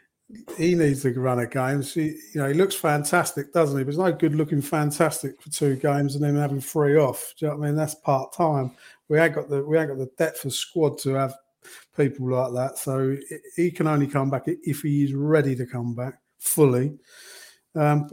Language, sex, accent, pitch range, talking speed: English, male, British, 130-150 Hz, 225 wpm